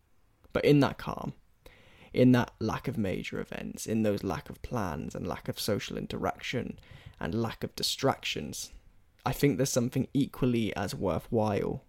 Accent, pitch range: British, 100-125 Hz